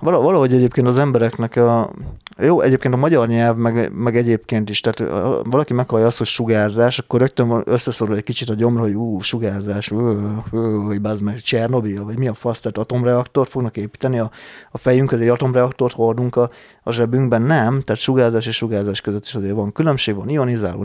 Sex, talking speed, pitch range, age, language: male, 180 wpm, 110-125 Hz, 30-49, Hungarian